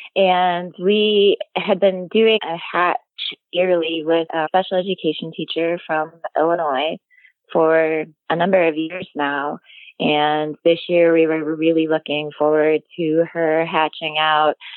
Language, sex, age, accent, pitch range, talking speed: English, female, 20-39, American, 140-170 Hz, 135 wpm